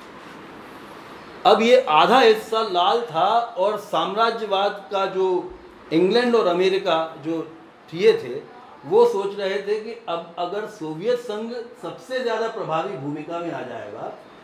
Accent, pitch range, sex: native, 165-230 Hz, male